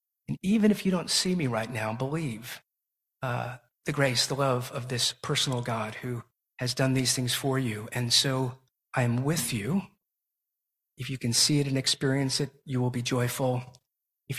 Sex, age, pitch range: male, 50-69, 125-150 Hz